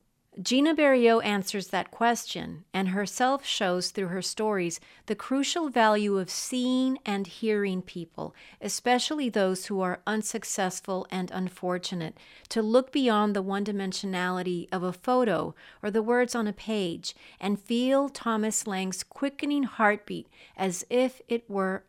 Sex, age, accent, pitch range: female, 40-59, American, 180-225 Hz